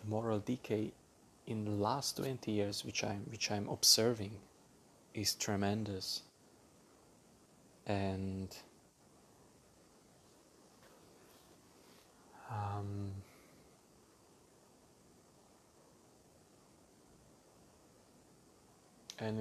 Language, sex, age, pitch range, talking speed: English, male, 30-49, 100-110 Hz, 55 wpm